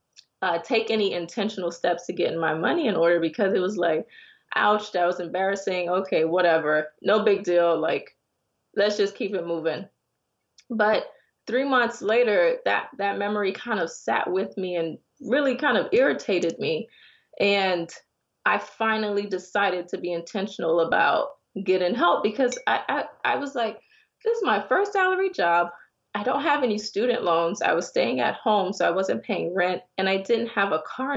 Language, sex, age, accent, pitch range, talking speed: English, female, 20-39, American, 185-280 Hz, 175 wpm